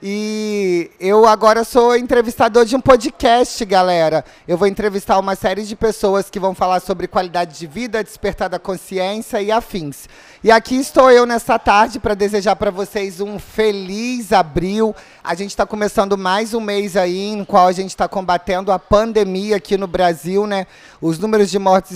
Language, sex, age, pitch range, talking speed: Portuguese, male, 20-39, 185-225 Hz, 180 wpm